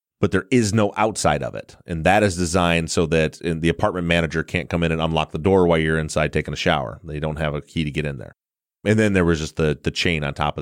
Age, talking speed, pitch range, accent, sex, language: 30-49, 275 wpm, 85-105 Hz, American, male, English